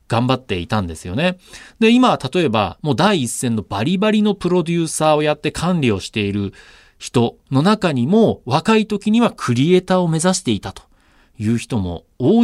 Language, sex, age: Japanese, male, 40-59